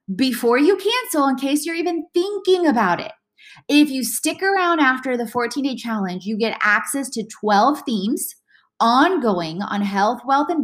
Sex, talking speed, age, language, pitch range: female, 165 wpm, 20-39, English, 215-310 Hz